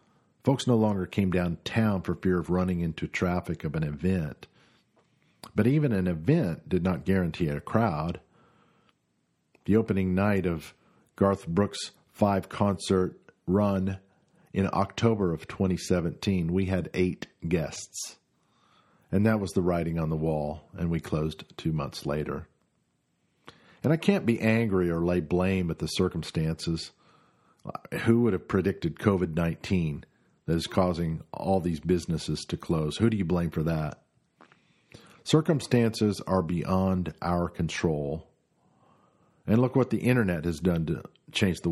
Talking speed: 140 wpm